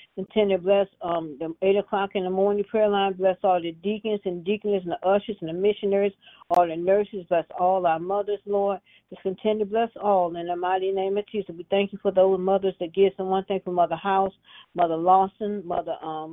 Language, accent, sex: English, American, female